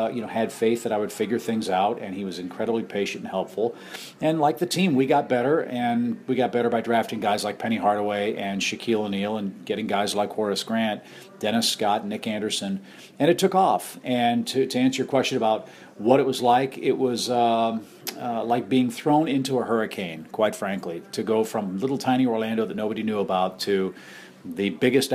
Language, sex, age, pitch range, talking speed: English, male, 40-59, 110-130 Hz, 210 wpm